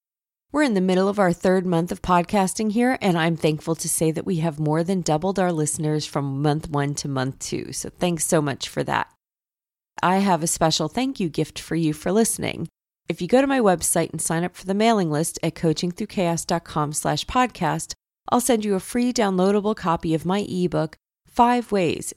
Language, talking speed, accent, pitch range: English, 205 wpm, American, 165-215 Hz